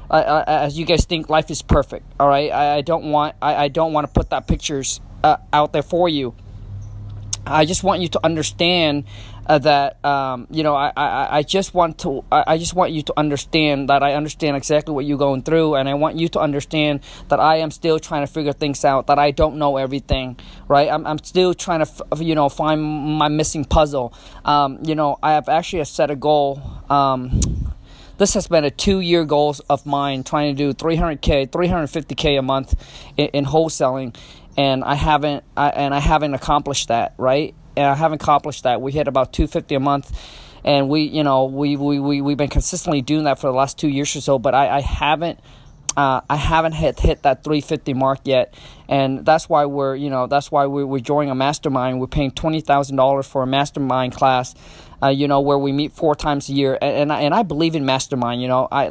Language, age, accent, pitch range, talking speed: English, 20-39, American, 135-155 Hz, 235 wpm